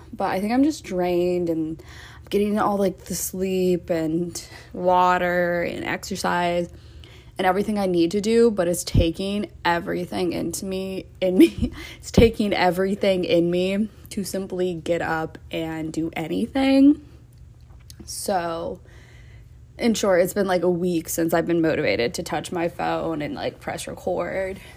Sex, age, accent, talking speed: female, 20-39, American, 155 wpm